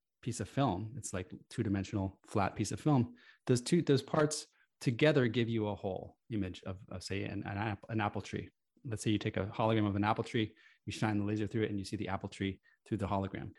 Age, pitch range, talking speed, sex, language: 30-49, 100-130 Hz, 235 wpm, male, English